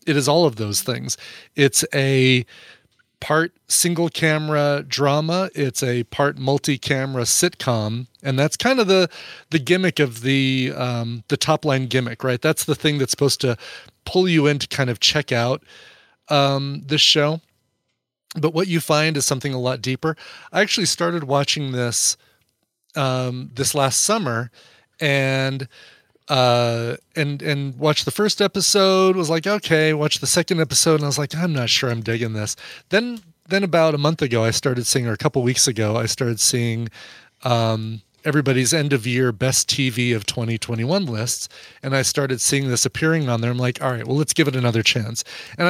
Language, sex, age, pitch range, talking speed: English, male, 30-49, 120-155 Hz, 180 wpm